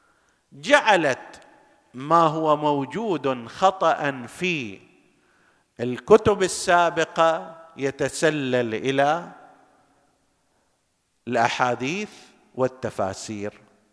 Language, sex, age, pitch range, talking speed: Arabic, male, 50-69, 125-200 Hz, 50 wpm